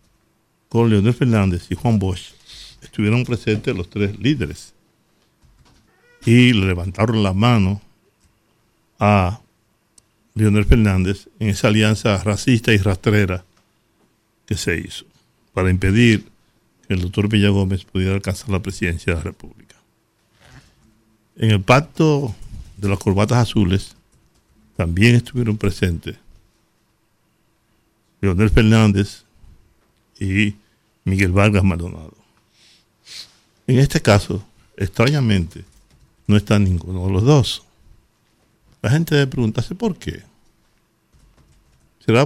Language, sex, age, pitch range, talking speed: Spanish, male, 60-79, 95-115 Hz, 105 wpm